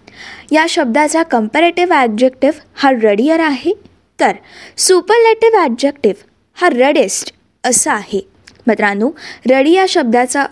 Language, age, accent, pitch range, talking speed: Marathi, 20-39, native, 230-310 Hz, 105 wpm